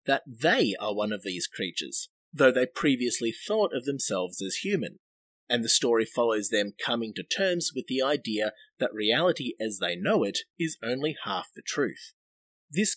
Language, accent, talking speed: English, Australian, 175 wpm